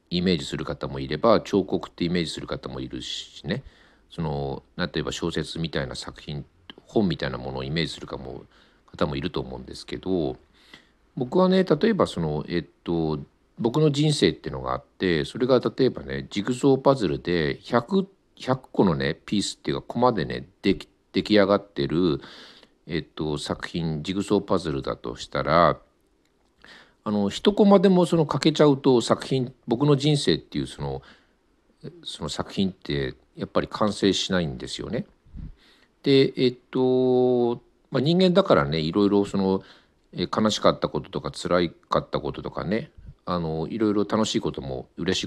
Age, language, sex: 50-69, Japanese, male